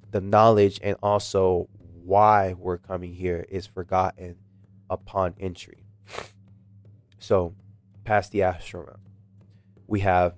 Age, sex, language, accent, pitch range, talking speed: 20-39, male, English, American, 95-105 Hz, 110 wpm